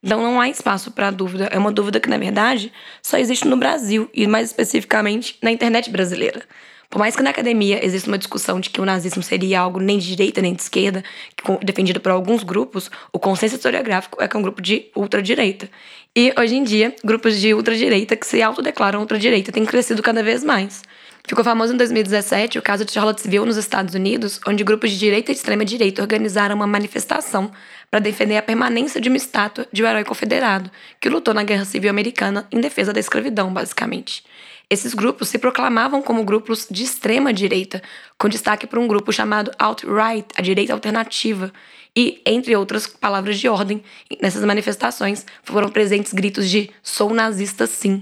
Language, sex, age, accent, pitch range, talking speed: Portuguese, female, 10-29, Brazilian, 200-230 Hz, 185 wpm